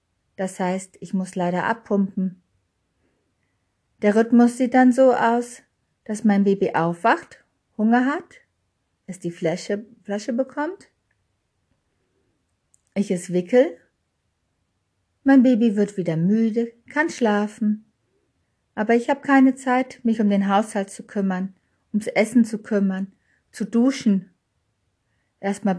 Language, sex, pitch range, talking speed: German, female, 190-235 Hz, 120 wpm